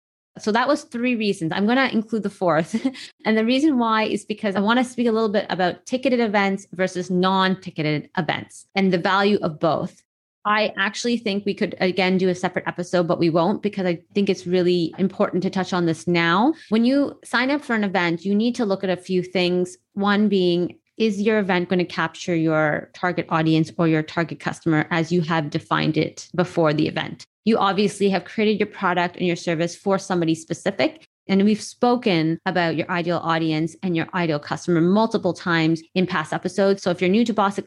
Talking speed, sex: 210 wpm, female